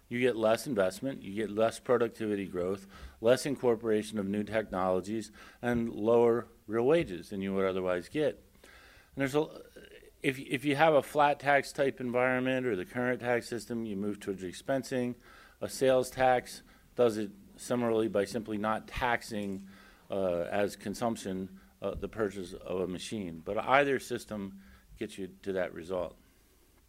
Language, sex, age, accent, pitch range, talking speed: English, male, 50-69, American, 100-125 Hz, 160 wpm